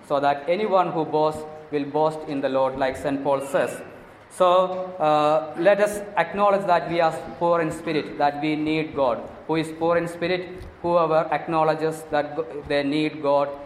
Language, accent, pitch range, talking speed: English, Indian, 145-170 Hz, 175 wpm